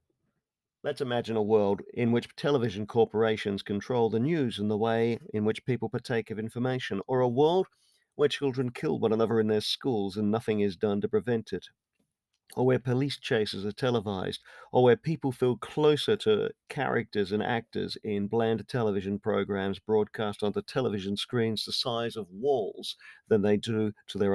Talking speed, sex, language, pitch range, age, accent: 175 wpm, male, English, 105-125 Hz, 50-69, British